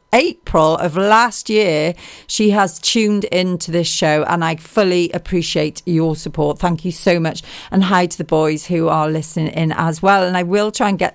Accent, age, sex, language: British, 40-59, female, Japanese